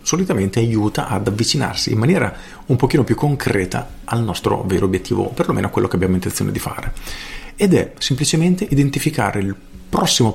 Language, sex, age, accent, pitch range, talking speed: Italian, male, 40-59, native, 100-135 Hz, 170 wpm